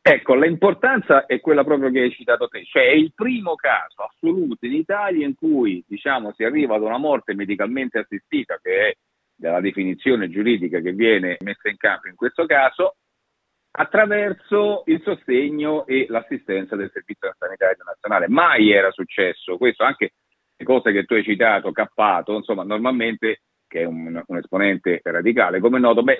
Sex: male